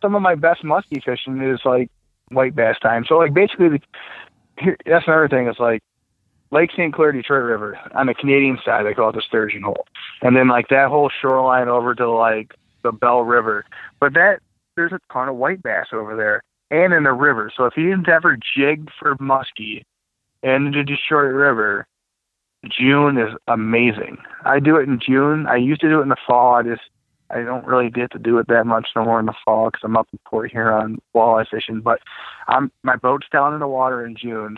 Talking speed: 210 wpm